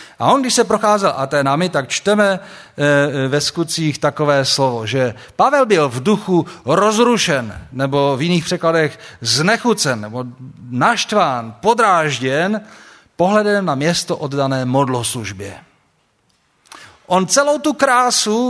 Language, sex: Czech, male